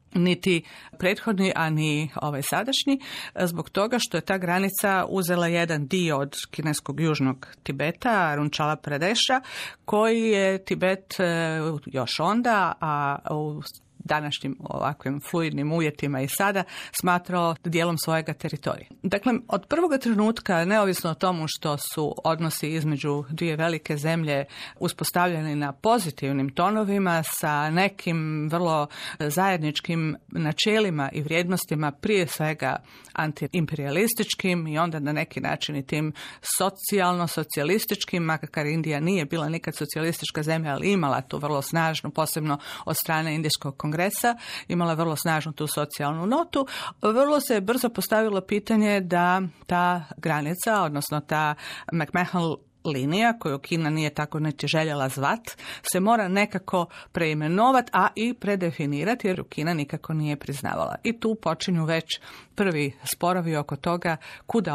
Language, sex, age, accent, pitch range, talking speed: Croatian, female, 50-69, native, 150-190 Hz, 130 wpm